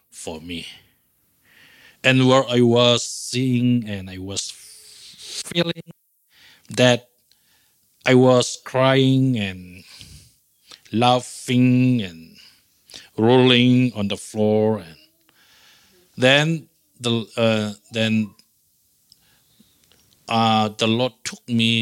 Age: 50-69